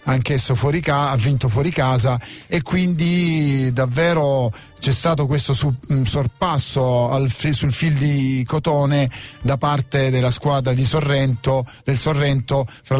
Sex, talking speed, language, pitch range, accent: male, 140 wpm, Italian, 130-150 Hz, native